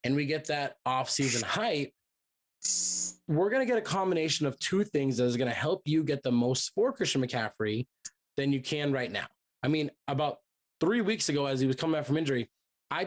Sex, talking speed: male, 210 wpm